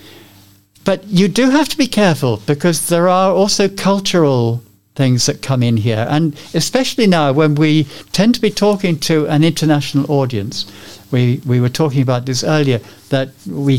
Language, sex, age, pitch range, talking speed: English, male, 60-79, 100-160 Hz, 170 wpm